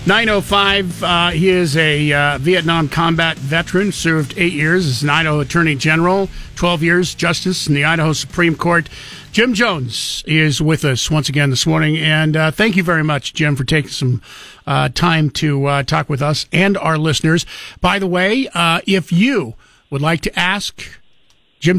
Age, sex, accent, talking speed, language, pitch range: 50-69, male, American, 180 wpm, English, 150-180 Hz